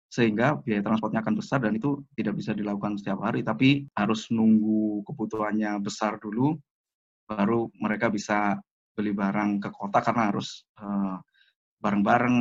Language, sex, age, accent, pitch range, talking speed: Indonesian, male, 20-39, native, 105-120 Hz, 140 wpm